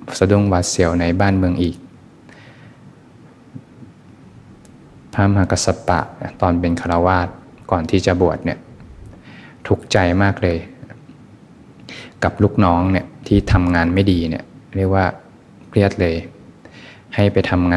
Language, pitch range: Thai, 85-100 Hz